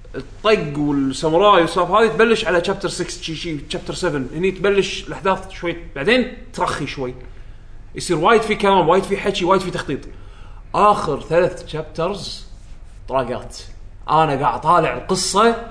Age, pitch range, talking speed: 20-39, 150-220 Hz, 140 wpm